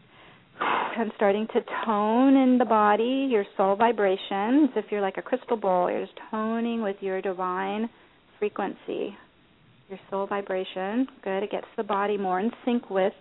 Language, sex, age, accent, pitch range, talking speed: English, female, 40-59, American, 195-230 Hz, 160 wpm